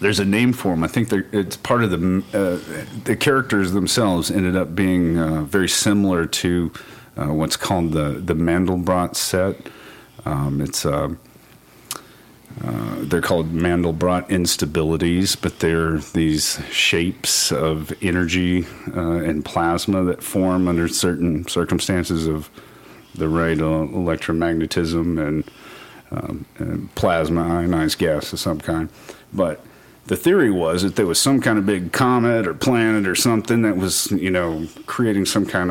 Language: English